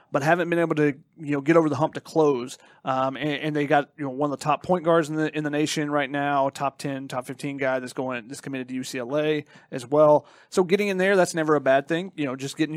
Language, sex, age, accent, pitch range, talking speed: English, male, 30-49, American, 145-175 Hz, 275 wpm